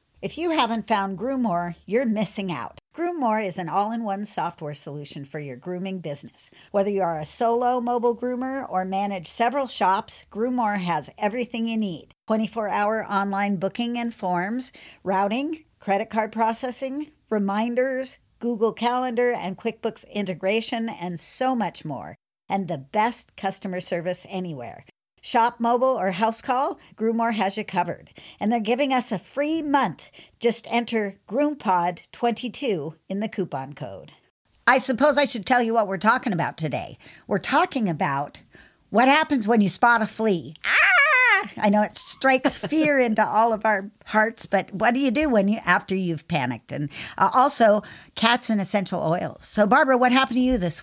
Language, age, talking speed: English, 50-69, 165 wpm